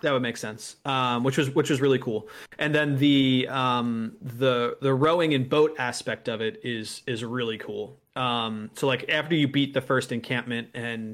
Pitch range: 115-135 Hz